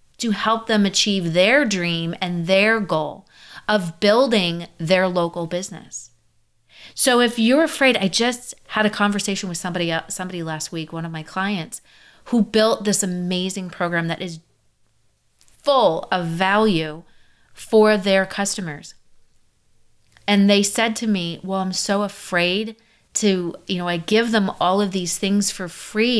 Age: 30-49